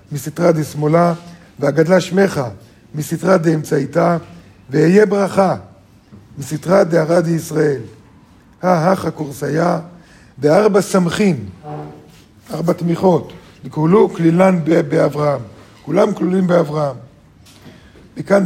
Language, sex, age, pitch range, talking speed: Hebrew, male, 50-69, 140-185 Hz, 80 wpm